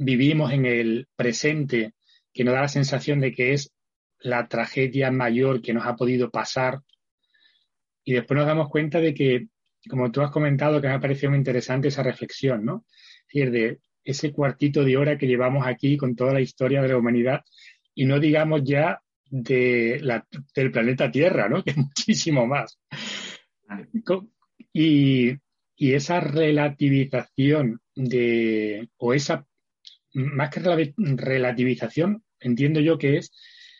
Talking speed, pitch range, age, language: 150 wpm, 125-155 Hz, 30-49, Spanish